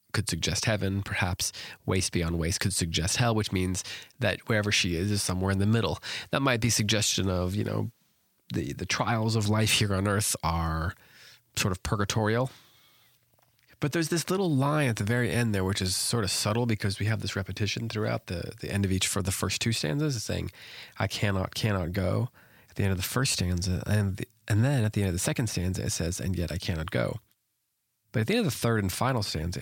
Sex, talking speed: male, 220 wpm